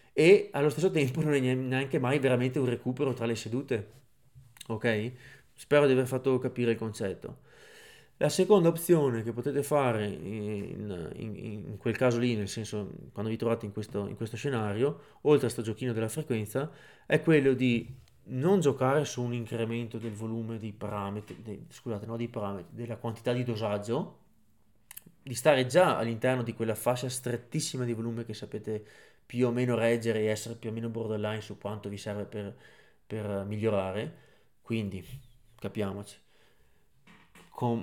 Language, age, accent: Italian, 20-39, native